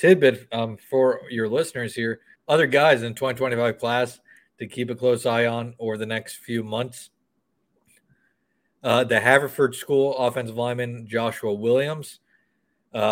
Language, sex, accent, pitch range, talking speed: English, male, American, 110-130 Hz, 140 wpm